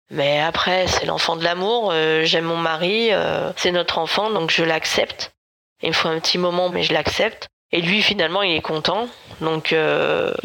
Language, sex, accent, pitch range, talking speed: French, female, French, 160-190 Hz, 195 wpm